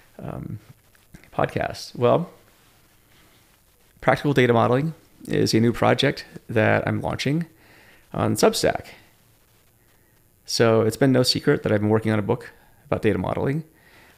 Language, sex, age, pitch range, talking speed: English, male, 30-49, 110-145 Hz, 125 wpm